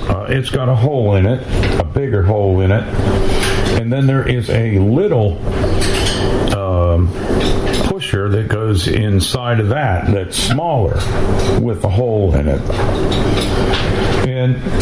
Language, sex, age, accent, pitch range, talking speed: English, male, 60-79, American, 95-120 Hz, 135 wpm